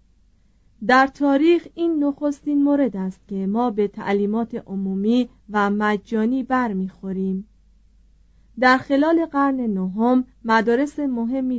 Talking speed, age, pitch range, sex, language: 105 wpm, 30-49, 195-255 Hz, female, Persian